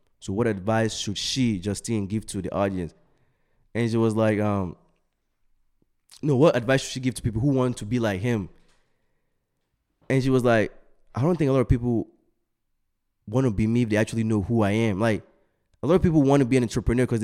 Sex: male